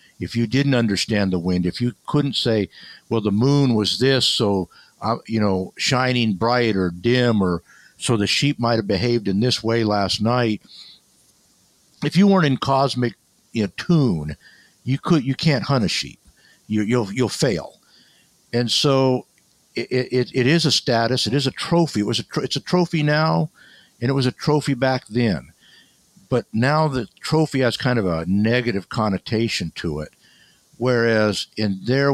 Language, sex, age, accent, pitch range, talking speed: English, male, 60-79, American, 100-130 Hz, 180 wpm